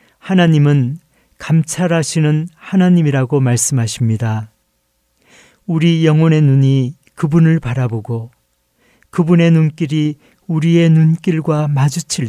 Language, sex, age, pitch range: Korean, male, 40-59, 120-160 Hz